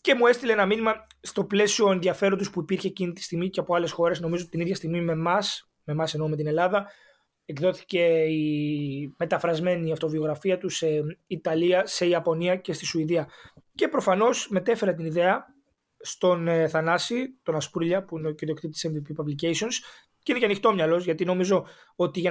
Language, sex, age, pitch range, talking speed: Greek, male, 20-39, 160-195 Hz, 175 wpm